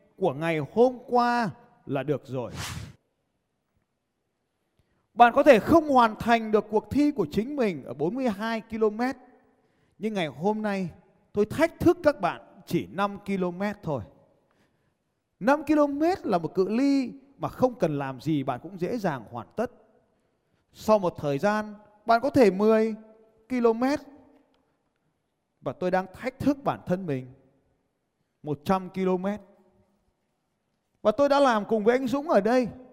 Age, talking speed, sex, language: 20-39, 150 wpm, male, Vietnamese